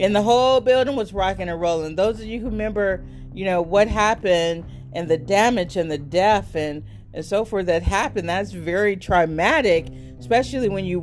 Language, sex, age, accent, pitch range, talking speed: English, female, 40-59, American, 160-200 Hz, 190 wpm